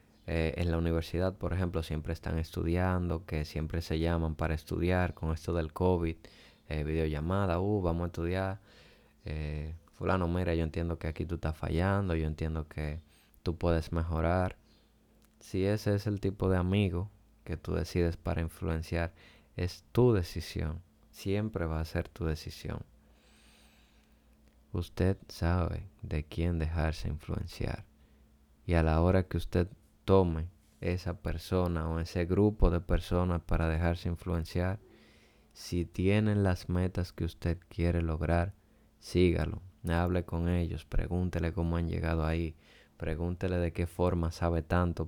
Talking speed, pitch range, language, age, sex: 145 wpm, 80-90 Hz, Spanish, 20-39, male